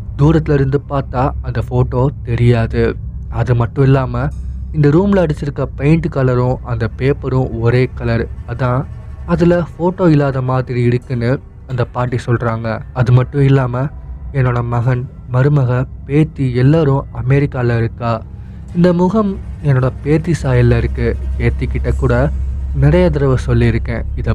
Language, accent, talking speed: Tamil, native, 120 wpm